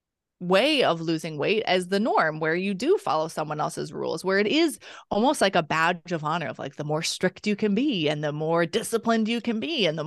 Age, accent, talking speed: 20-39, American, 240 wpm